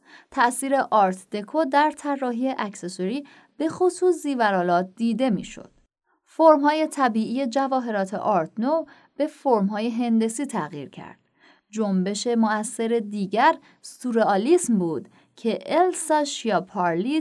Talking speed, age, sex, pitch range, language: 100 wpm, 30-49, female, 195-275 Hz, Persian